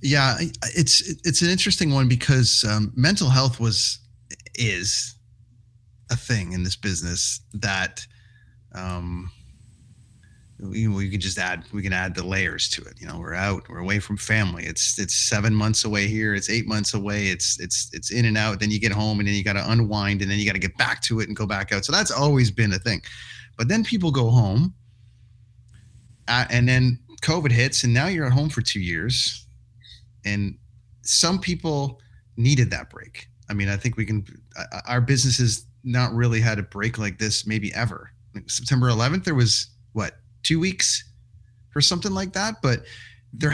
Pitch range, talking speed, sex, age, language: 105-125 Hz, 190 wpm, male, 30-49, English